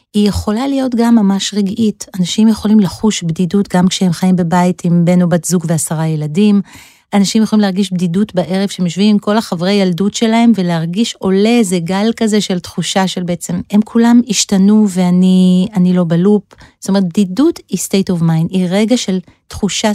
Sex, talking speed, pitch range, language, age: female, 175 wpm, 175-215 Hz, Hebrew, 40-59